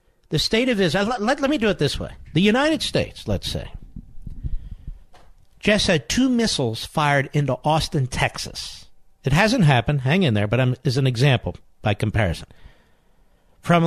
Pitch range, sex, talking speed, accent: 115-195 Hz, male, 165 wpm, American